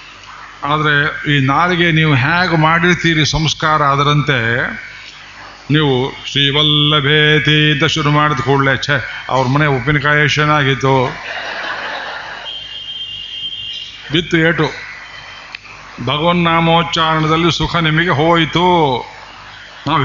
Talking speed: 75 wpm